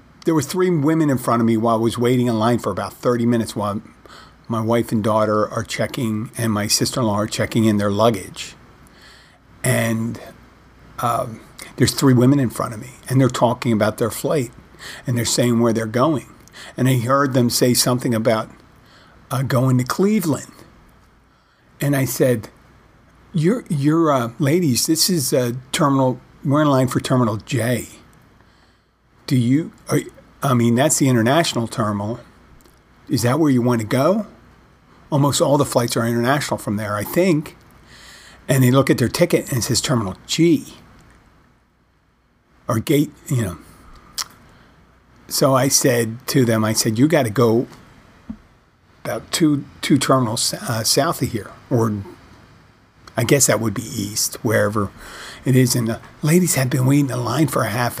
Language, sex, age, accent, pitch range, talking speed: English, male, 50-69, American, 115-140 Hz, 170 wpm